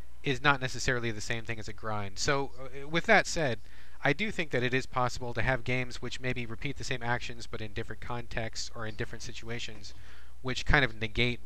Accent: American